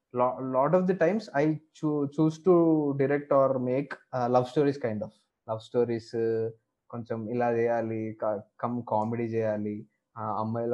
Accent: native